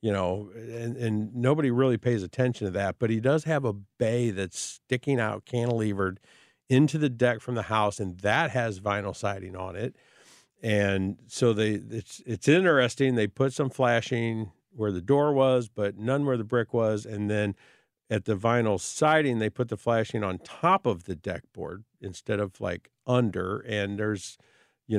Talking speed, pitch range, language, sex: 185 wpm, 100-125 Hz, English, male